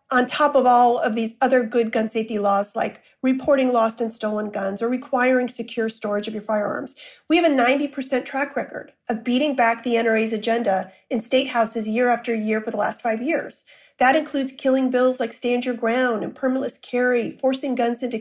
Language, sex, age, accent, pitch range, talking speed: English, female, 40-59, American, 230-275 Hz, 200 wpm